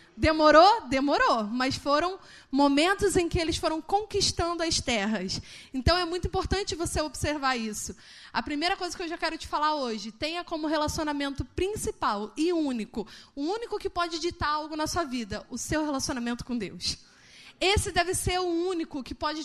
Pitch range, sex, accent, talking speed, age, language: 285-360 Hz, female, Brazilian, 175 wpm, 20-39, Portuguese